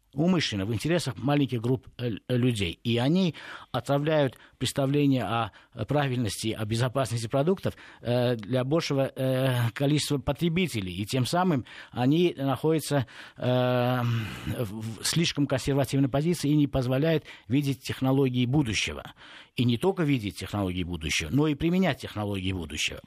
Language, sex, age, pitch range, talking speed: Russian, male, 50-69, 110-140 Hz, 115 wpm